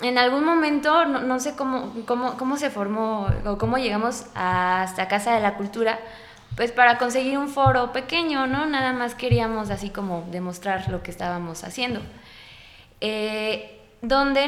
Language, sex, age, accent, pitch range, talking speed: Spanish, female, 20-39, Mexican, 190-245 Hz, 160 wpm